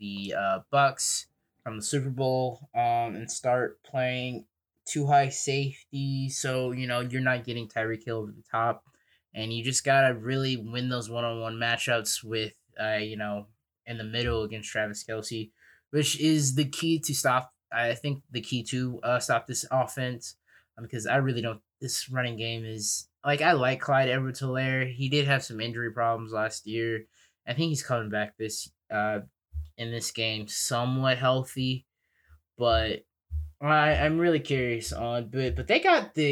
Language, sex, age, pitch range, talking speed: English, male, 20-39, 110-135 Hz, 175 wpm